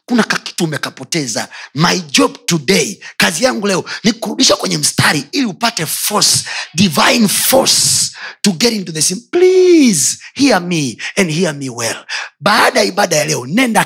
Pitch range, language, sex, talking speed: 155-240 Hz, Swahili, male, 145 wpm